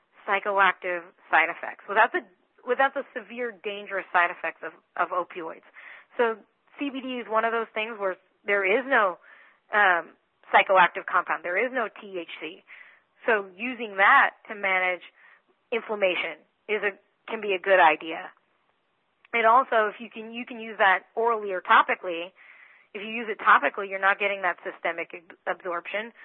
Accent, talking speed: American, 160 wpm